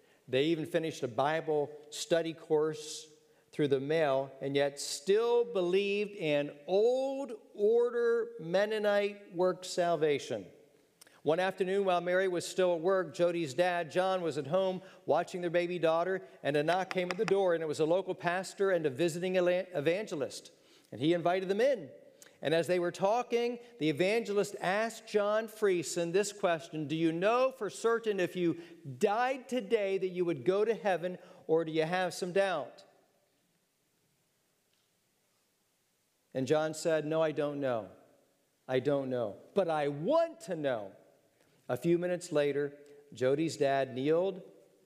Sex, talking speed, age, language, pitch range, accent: male, 155 wpm, 50-69, English, 150-195 Hz, American